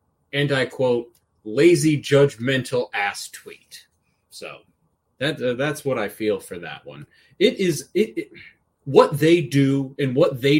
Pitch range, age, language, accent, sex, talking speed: 130-195 Hz, 30-49, English, American, male, 155 wpm